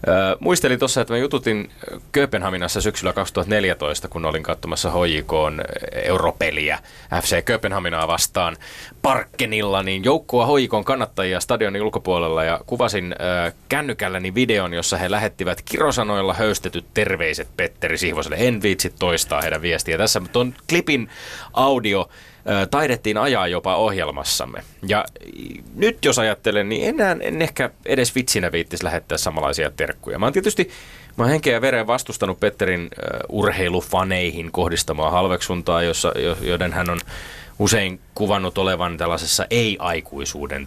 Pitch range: 85-105 Hz